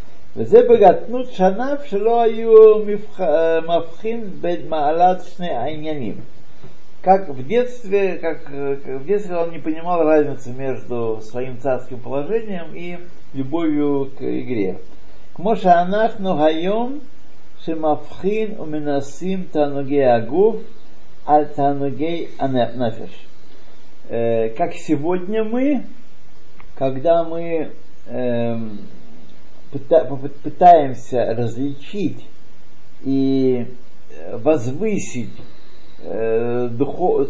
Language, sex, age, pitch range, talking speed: Russian, male, 50-69, 120-180 Hz, 50 wpm